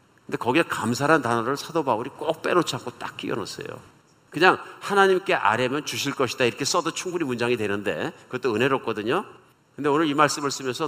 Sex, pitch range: male, 120-155 Hz